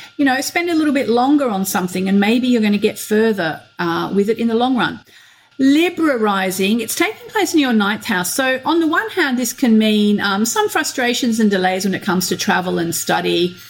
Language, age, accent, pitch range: English, 40-59, Australian, 185-250 Hz